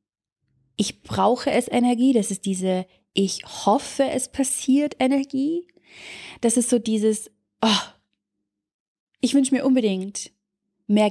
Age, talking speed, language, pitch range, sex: 30-49, 120 wpm, German, 205-265 Hz, female